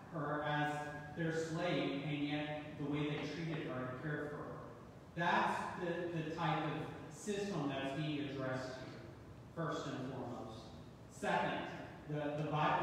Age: 30-49